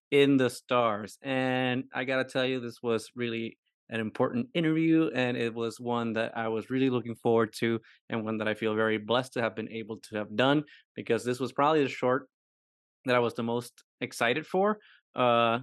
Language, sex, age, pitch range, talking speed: English, male, 20-39, 115-130 Hz, 205 wpm